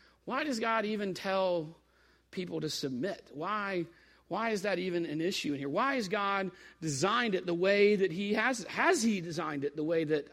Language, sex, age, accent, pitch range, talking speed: English, male, 40-59, American, 155-210 Hz, 200 wpm